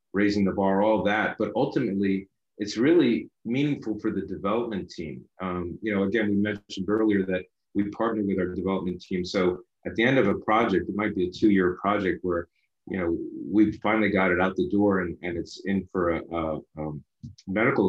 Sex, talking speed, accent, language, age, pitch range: male, 200 wpm, American, English, 30-49, 90-105 Hz